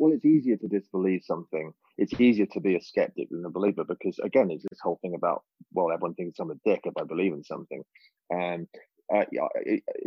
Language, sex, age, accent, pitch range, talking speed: English, male, 30-49, British, 90-145 Hz, 220 wpm